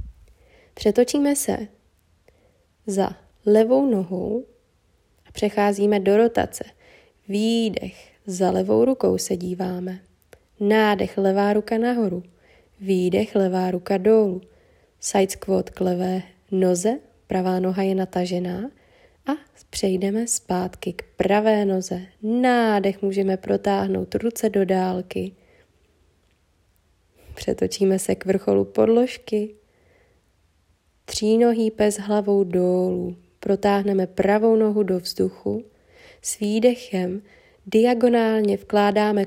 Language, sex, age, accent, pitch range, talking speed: Czech, female, 20-39, native, 185-220 Hz, 95 wpm